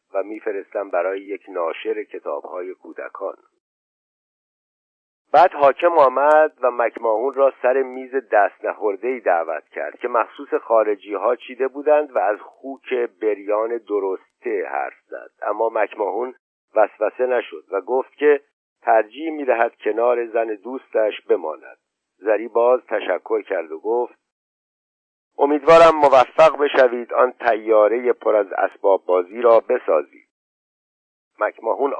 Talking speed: 115 wpm